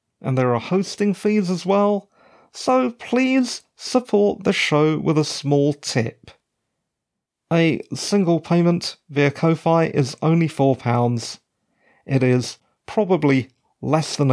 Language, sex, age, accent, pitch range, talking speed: English, male, 40-59, British, 135-190 Hz, 120 wpm